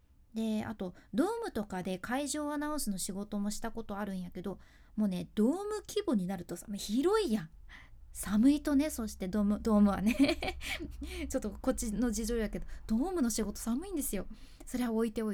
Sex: female